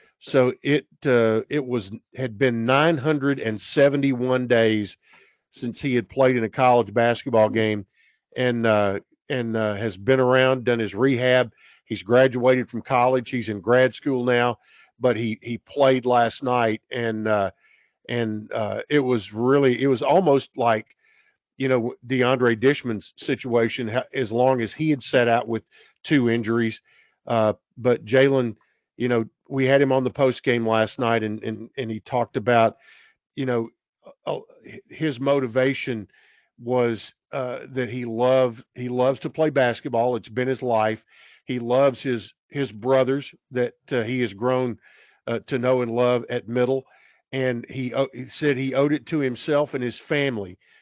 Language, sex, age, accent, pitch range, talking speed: English, male, 50-69, American, 115-130 Hz, 160 wpm